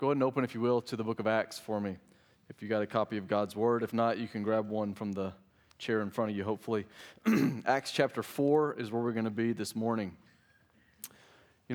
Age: 30-49